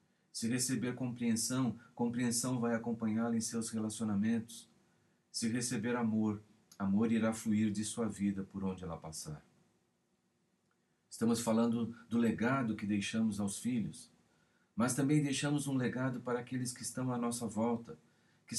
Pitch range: 105-125 Hz